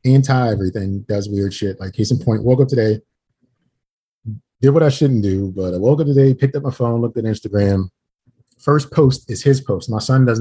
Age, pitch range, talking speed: 30-49, 100-135 Hz, 215 wpm